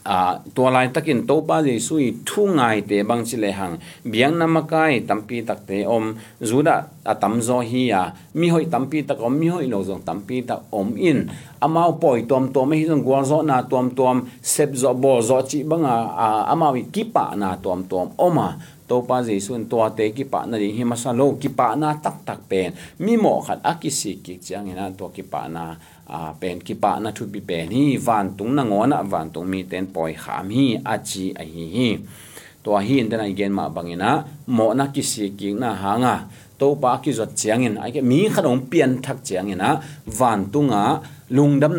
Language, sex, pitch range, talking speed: English, male, 100-140 Hz, 185 wpm